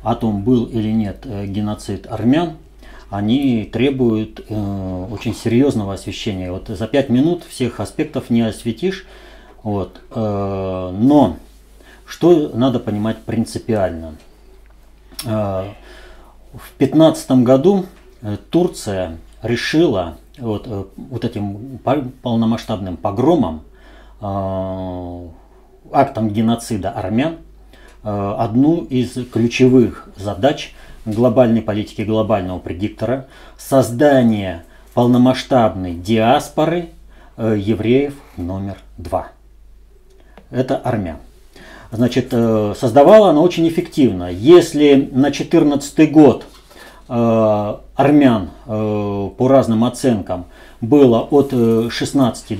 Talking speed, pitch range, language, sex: 80 wpm, 100-130 Hz, Russian, male